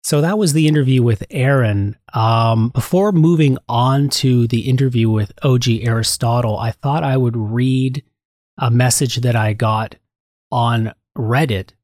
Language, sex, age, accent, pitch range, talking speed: English, male, 30-49, American, 110-135 Hz, 145 wpm